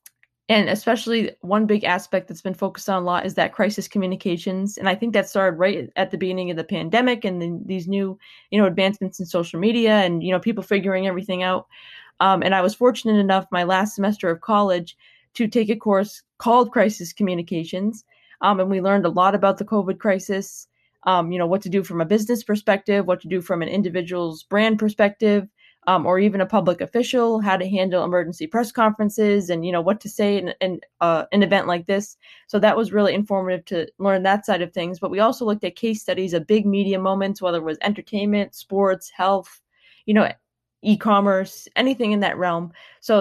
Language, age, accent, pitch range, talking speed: English, 20-39, American, 185-210 Hz, 210 wpm